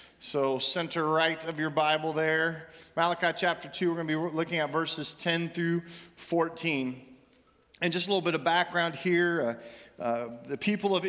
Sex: male